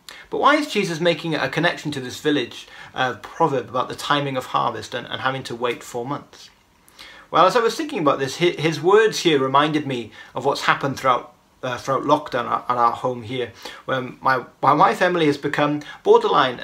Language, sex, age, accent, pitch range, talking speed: English, male, 30-49, British, 130-170 Hz, 195 wpm